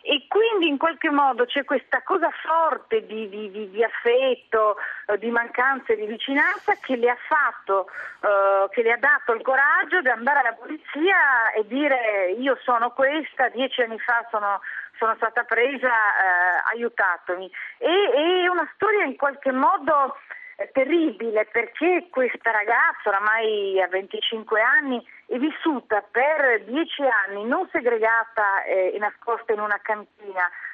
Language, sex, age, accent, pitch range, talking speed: Italian, female, 40-59, native, 220-300 Hz, 145 wpm